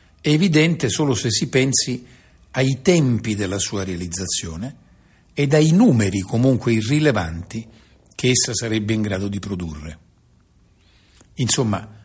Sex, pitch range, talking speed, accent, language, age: male, 95-130 Hz, 120 wpm, native, Italian, 50-69